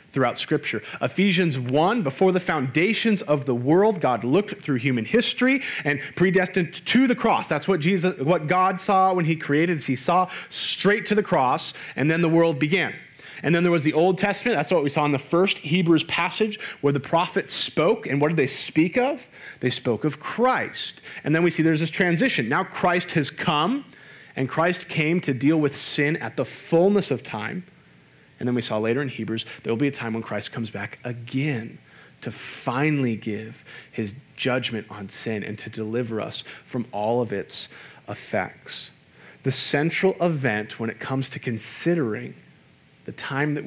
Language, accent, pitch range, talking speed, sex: English, American, 125-175 Hz, 190 wpm, male